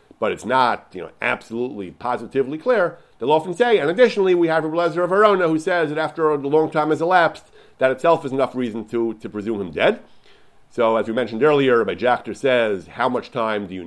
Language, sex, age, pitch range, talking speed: English, male, 40-59, 120-160 Hz, 210 wpm